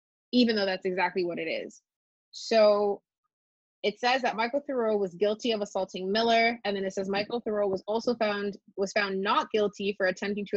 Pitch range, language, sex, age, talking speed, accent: 185-230 Hz, English, female, 20-39, 195 wpm, American